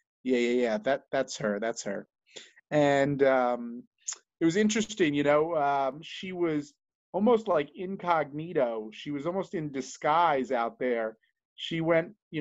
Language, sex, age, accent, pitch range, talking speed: English, male, 30-49, American, 135-185 Hz, 150 wpm